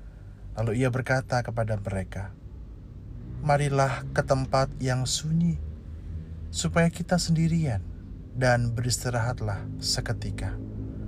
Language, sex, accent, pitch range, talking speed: Indonesian, male, native, 105-135 Hz, 85 wpm